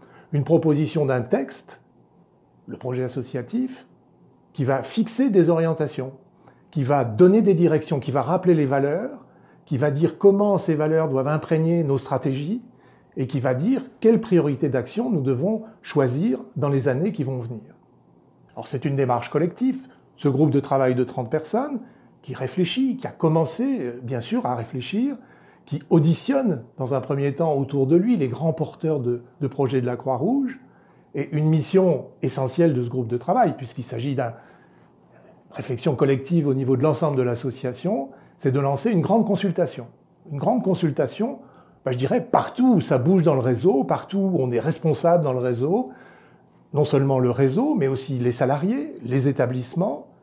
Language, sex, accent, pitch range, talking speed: French, male, French, 135-185 Hz, 170 wpm